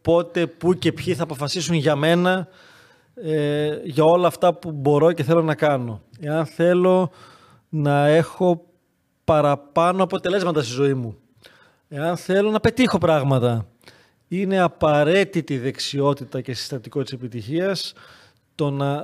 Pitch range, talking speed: 135-170 Hz, 130 wpm